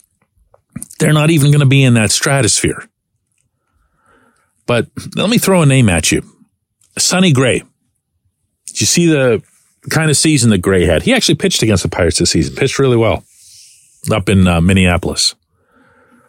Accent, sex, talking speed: American, male, 160 wpm